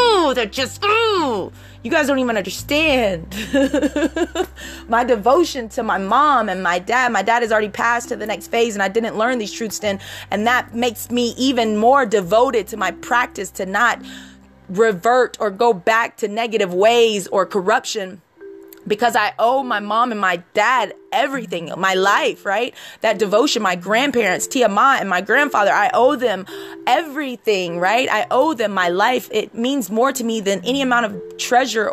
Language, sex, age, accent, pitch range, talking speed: English, female, 20-39, American, 205-265 Hz, 180 wpm